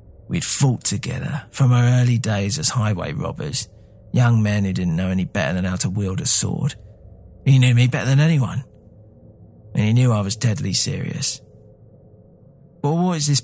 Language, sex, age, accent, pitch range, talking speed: English, male, 40-59, British, 105-140 Hz, 180 wpm